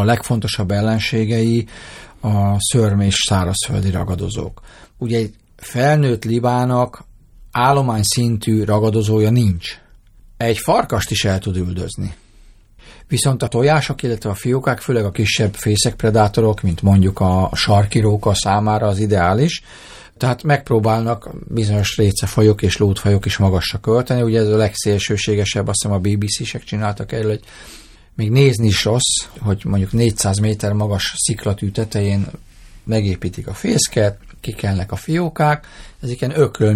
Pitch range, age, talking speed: 100-120 Hz, 40-59, 125 wpm